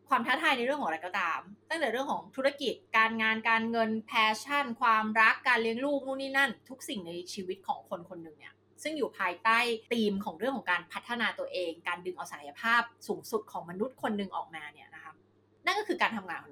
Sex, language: female, Thai